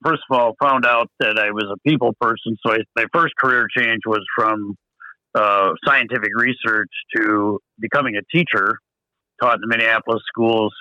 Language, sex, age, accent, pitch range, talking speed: English, male, 60-79, American, 105-130 Hz, 170 wpm